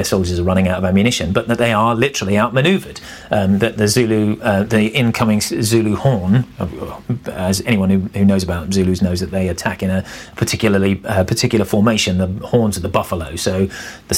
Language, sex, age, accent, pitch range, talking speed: English, male, 40-59, British, 100-115 Hz, 190 wpm